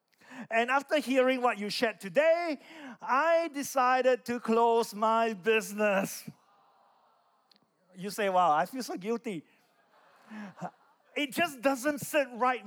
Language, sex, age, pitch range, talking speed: English, male, 40-59, 195-255 Hz, 120 wpm